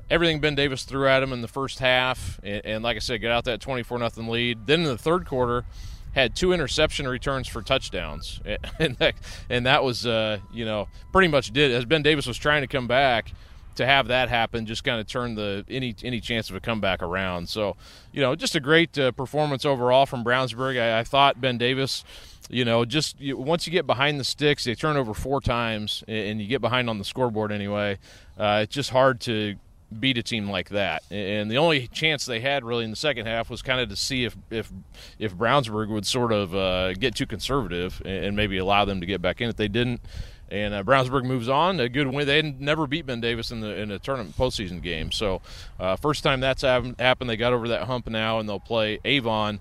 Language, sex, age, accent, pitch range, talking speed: English, male, 30-49, American, 105-135 Hz, 230 wpm